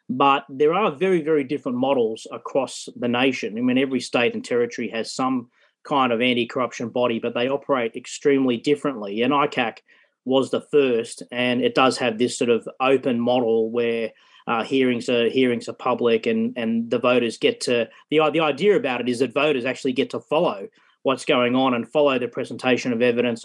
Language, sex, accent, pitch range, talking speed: English, male, Australian, 120-145 Hz, 190 wpm